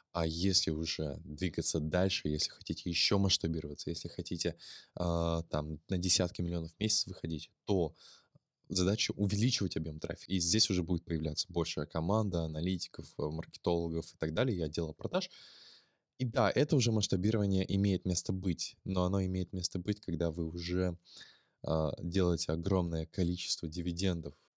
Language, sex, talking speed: Russian, male, 145 wpm